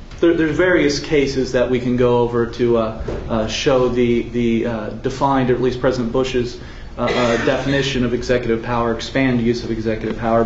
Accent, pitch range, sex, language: American, 125-150 Hz, male, English